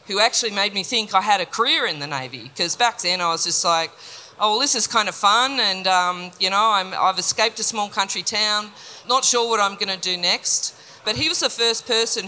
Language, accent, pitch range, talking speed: English, Australian, 180-225 Hz, 245 wpm